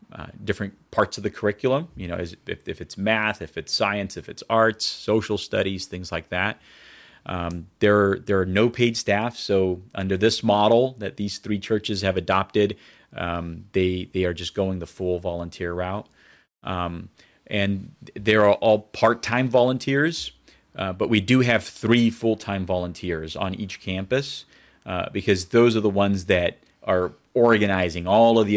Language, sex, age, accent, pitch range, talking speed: English, male, 30-49, American, 95-110 Hz, 165 wpm